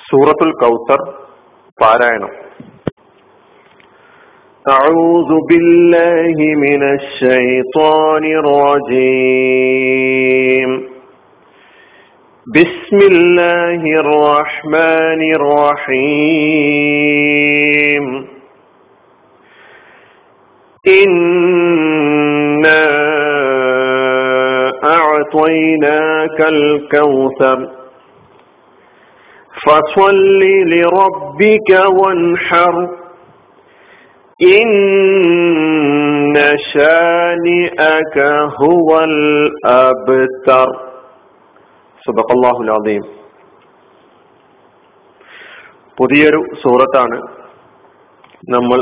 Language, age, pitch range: Malayalam, 50-69, 130-170 Hz